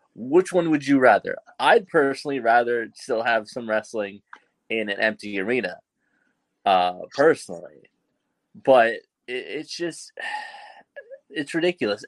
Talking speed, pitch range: 120 wpm, 110-155 Hz